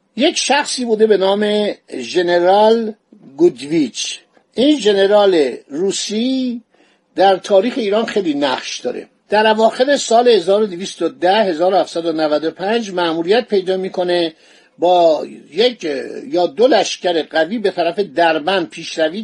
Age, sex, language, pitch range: 50-69, male, Persian, 180-230 Hz